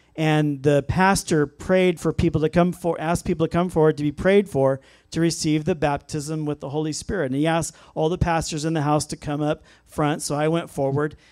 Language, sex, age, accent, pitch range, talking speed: English, male, 40-59, American, 135-180 Hz, 230 wpm